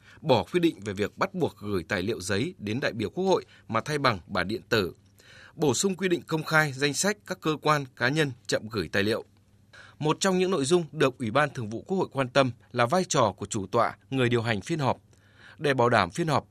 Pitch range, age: 110-155 Hz, 20-39